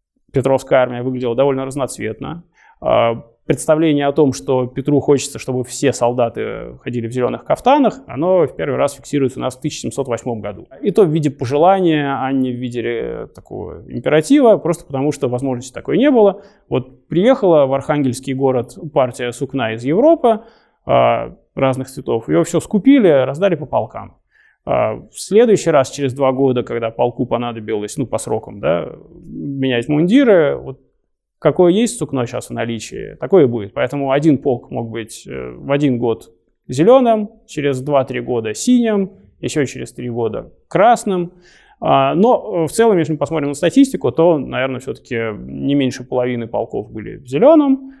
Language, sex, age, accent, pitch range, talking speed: Russian, male, 20-39, native, 125-165 Hz, 155 wpm